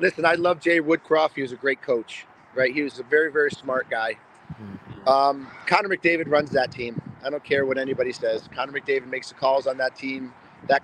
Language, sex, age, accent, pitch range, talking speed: English, male, 40-59, American, 125-145 Hz, 215 wpm